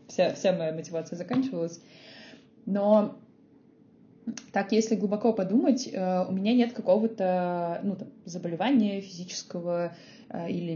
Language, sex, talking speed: Russian, female, 105 wpm